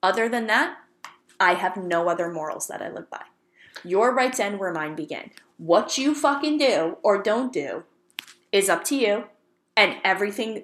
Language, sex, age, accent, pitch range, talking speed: English, female, 20-39, American, 215-335 Hz, 175 wpm